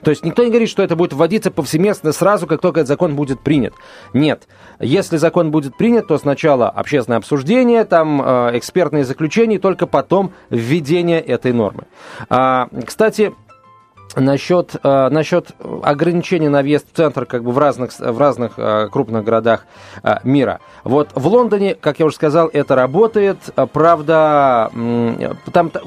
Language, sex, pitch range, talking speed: Russian, male, 135-185 Hz, 140 wpm